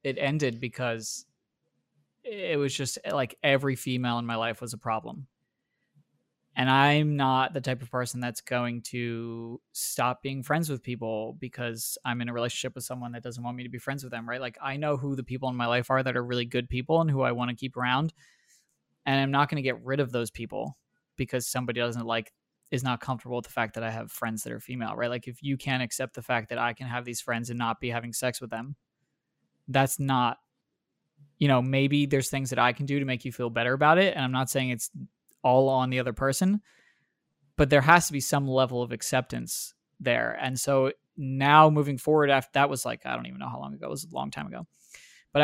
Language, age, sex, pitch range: English, 20-39, male, 120-140 Hz